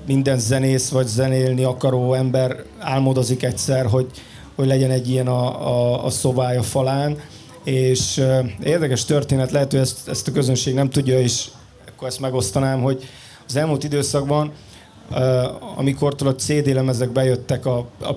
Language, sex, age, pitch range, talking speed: Hungarian, male, 30-49, 125-140 Hz, 140 wpm